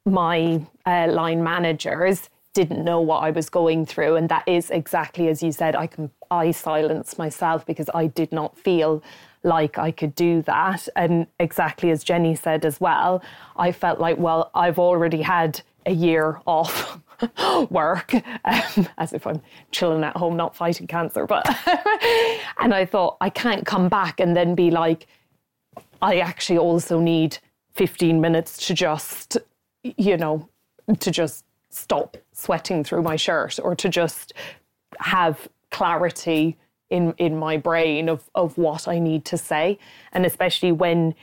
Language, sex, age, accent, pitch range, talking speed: English, female, 20-39, Irish, 160-180 Hz, 160 wpm